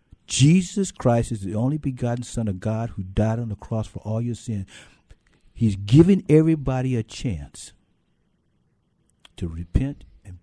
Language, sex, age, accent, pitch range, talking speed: English, male, 60-79, American, 95-125 Hz, 150 wpm